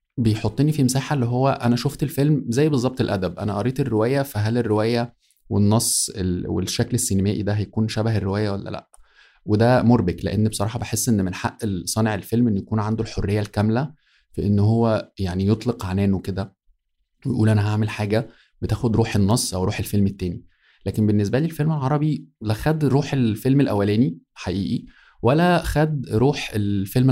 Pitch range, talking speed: 100-125 Hz, 160 wpm